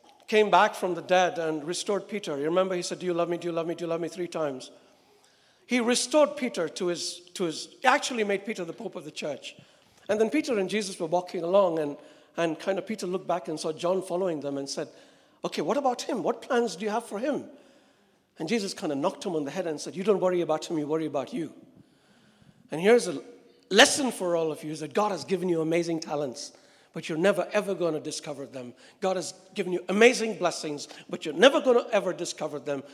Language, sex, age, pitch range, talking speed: English, male, 60-79, 155-210 Hz, 235 wpm